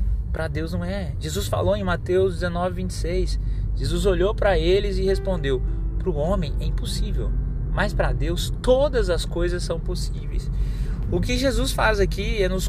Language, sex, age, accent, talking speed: Portuguese, male, 20-39, Brazilian, 170 wpm